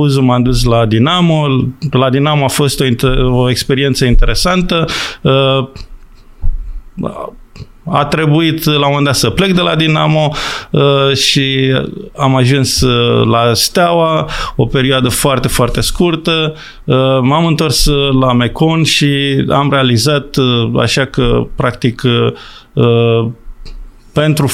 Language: Romanian